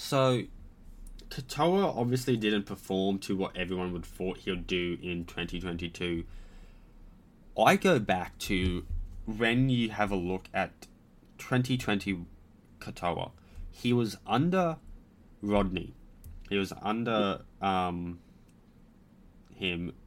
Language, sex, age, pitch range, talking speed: English, male, 20-39, 85-120 Hz, 110 wpm